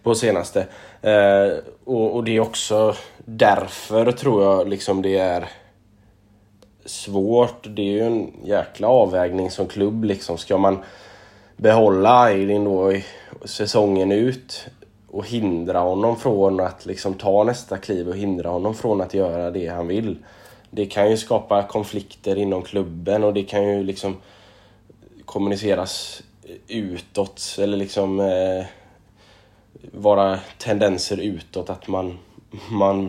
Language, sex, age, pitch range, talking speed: Swedish, male, 20-39, 95-105 Hz, 125 wpm